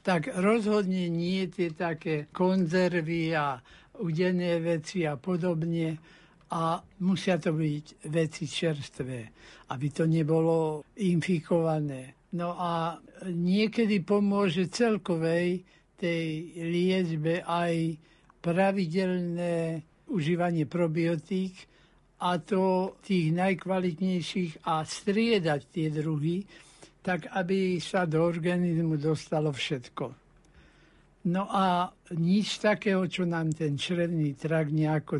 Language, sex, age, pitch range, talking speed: Slovak, male, 60-79, 155-185 Hz, 95 wpm